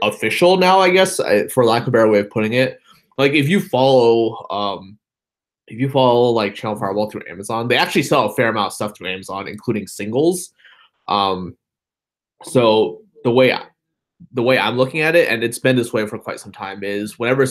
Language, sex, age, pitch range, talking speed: English, male, 20-39, 105-130 Hz, 210 wpm